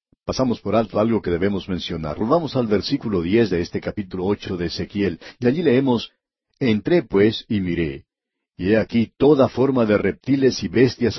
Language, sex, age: English, male, 60-79